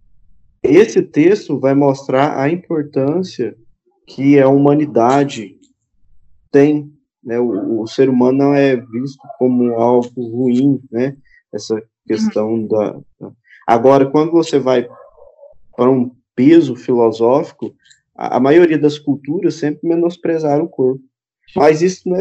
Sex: male